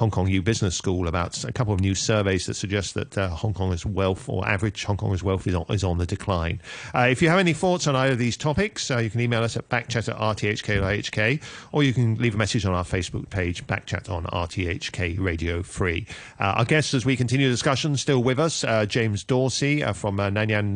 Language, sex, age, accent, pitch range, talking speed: English, male, 40-59, British, 100-130 Hz, 235 wpm